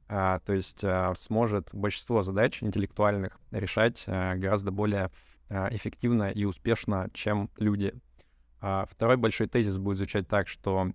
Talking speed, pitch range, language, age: 140 wpm, 95-110 Hz, Russian, 20-39